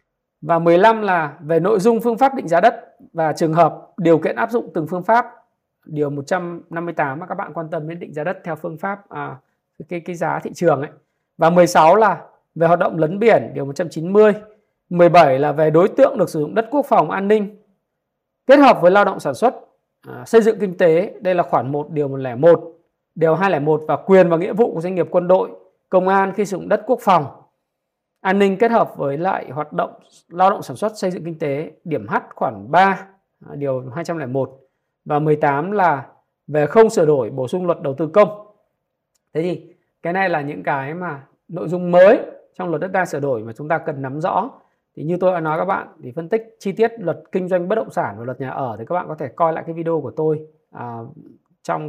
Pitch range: 155-195 Hz